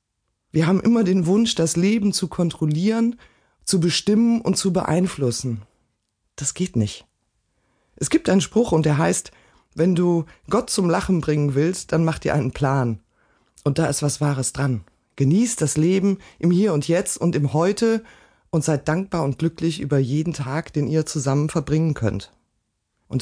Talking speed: 170 wpm